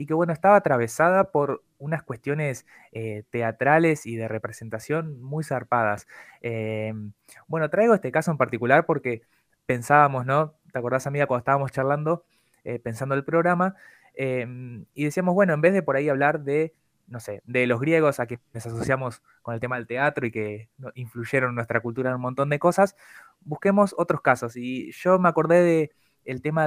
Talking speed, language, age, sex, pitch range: 180 wpm, Spanish, 20-39, male, 120-155 Hz